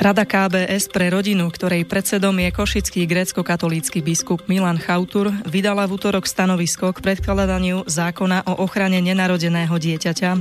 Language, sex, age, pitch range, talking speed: Slovak, female, 20-39, 165-190 Hz, 135 wpm